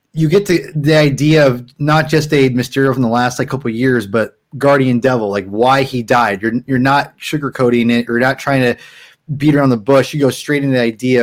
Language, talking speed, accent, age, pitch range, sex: English, 230 wpm, American, 20-39, 120-155 Hz, male